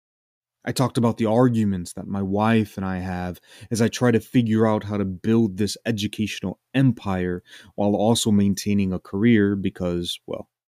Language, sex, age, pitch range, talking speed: English, male, 30-49, 95-120 Hz, 165 wpm